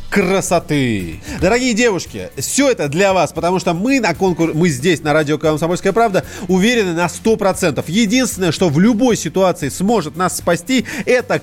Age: 30-49